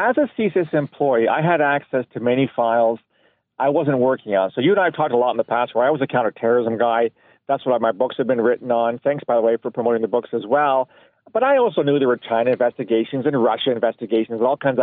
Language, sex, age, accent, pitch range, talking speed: English, male, 50-69, American, 120-175 Hz, 255 wpm